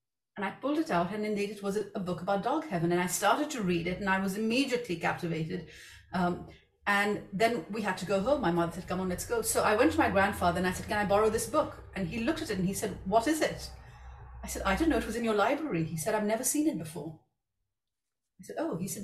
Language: English